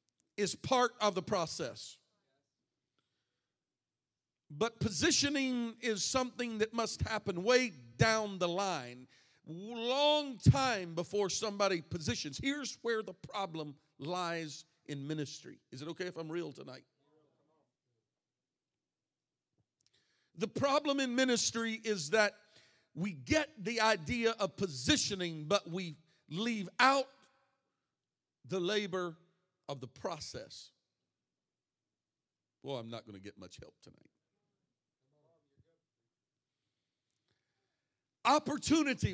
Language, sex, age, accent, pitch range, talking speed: English, male, 50-69, American, 155-235 Hz, 100 wpm